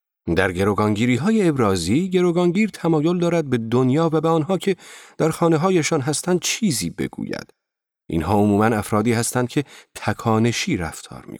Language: Persian